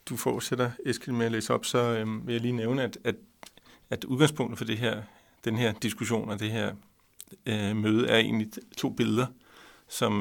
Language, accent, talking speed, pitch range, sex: Danish, native, 200 wpm, 105-120 Hz, male